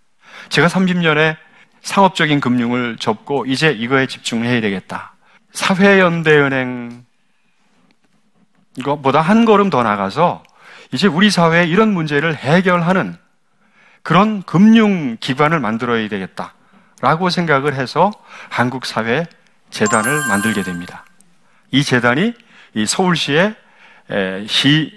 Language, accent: Korean, native